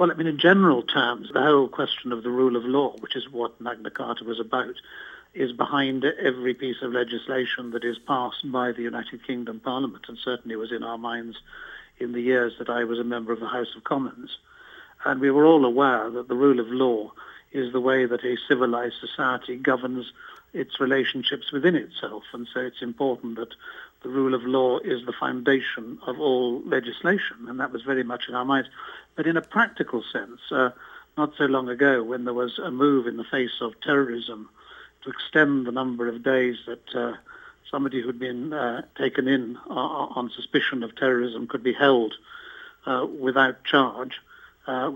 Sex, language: male, English